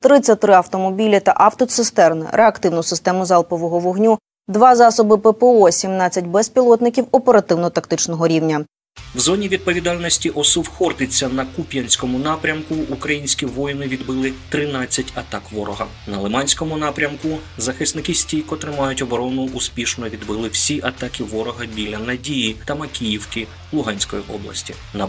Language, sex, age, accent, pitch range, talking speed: Ukrainian, male, 20-39, native, 120-155 Hz, 115 wpm